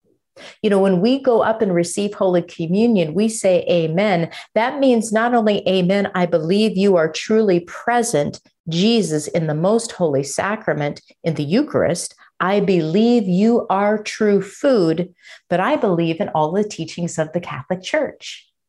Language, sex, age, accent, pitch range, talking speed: English, female, 50-69, American, 155-210 Hz, 160 wpm